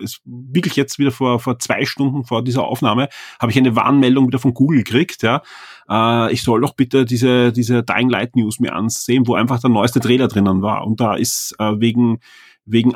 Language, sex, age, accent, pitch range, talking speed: German, male, 30-49, German, 115-135 Hz, 210 wpm